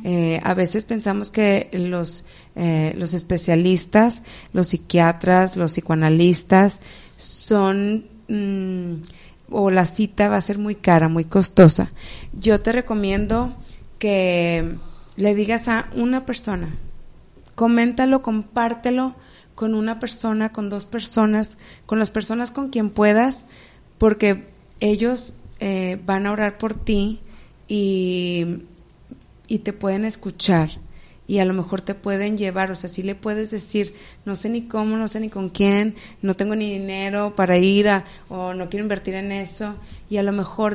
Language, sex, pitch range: Spanish, female, 185-215 Hz